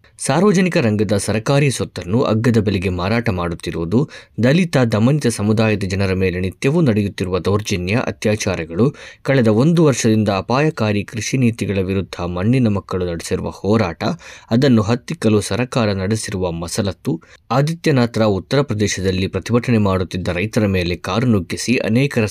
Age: 20-39